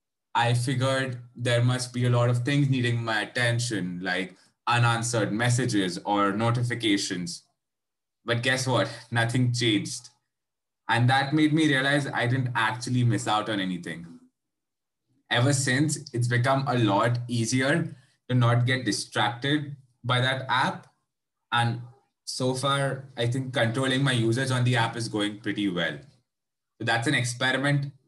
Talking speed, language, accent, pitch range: 145 wpm, English, Indian, 115-130 Hz